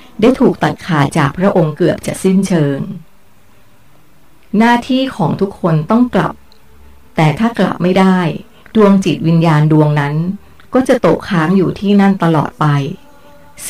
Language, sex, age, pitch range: Thai, female, 30-49, 155-200 Hz